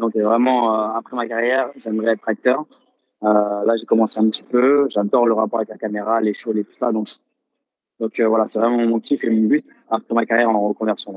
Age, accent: 20-39, French